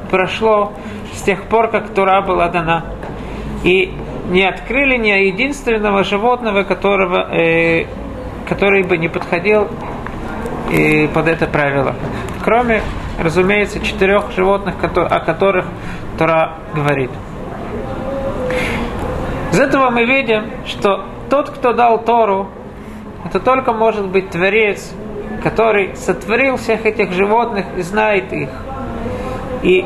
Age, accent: 40-59, native